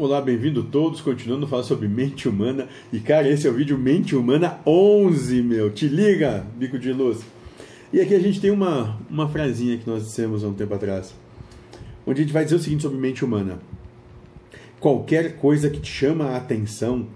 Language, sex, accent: Portuguese, male, Brazilian